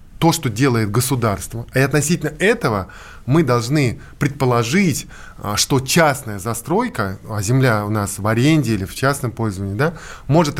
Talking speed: 140 wpm